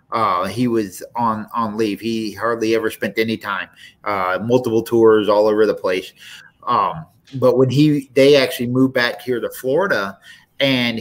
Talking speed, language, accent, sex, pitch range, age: 170 wpm, English, American, male, 110-130 Hz, 30-49